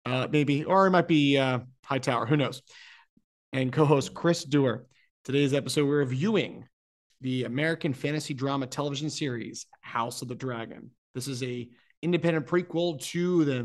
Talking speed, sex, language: 155 wpm, male, English